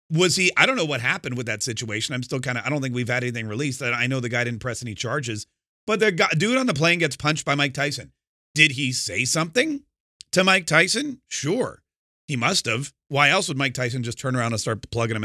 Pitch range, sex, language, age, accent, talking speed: 120-160 Hz, male, English, 30-49, American, 255 wpm